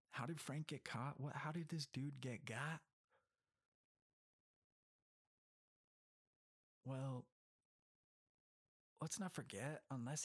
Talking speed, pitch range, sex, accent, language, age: 100 wpm, 115-145 Hz, male, American, English, 30-49